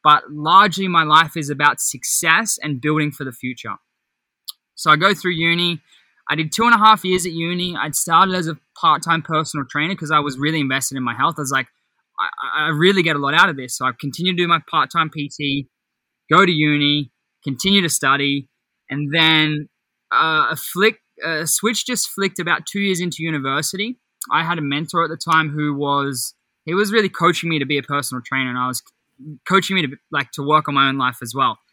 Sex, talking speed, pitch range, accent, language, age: male, 220 wpm, 140-170 Hz, Australian, English, 10-29